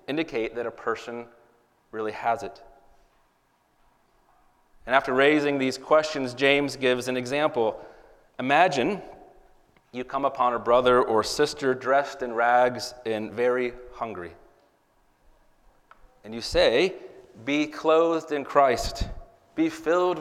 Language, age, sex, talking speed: English, 30-49, male, 115 wpm